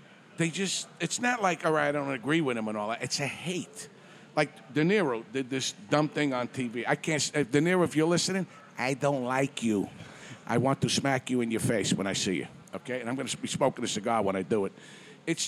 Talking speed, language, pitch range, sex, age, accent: 250 wpm, English, 125-170 Hz, male, 50-69, American